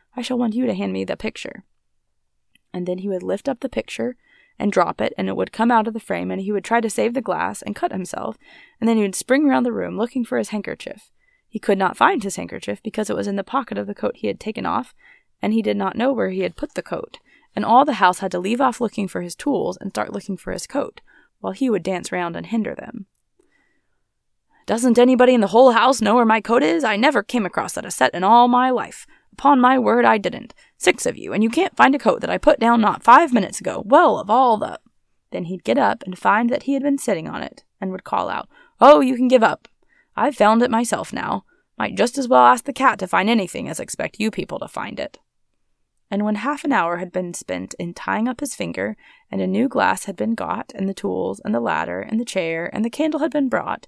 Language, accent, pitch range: English, American, 195-265 Hz